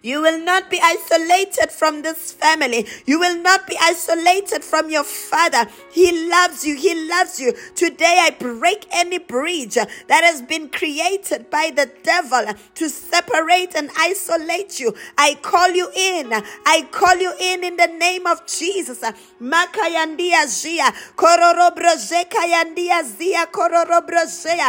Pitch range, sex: 310-360 Hz, female